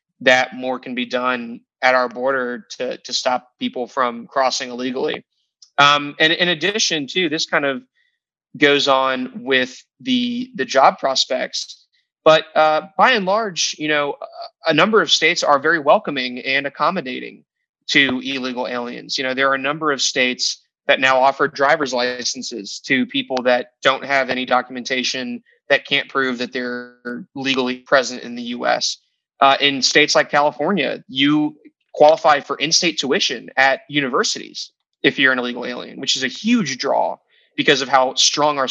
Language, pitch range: English, 125-160 Hz